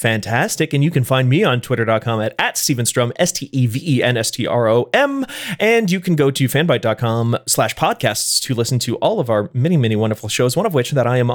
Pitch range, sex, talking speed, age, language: 115-155 Hz, male, 190 wpm, 30-49, English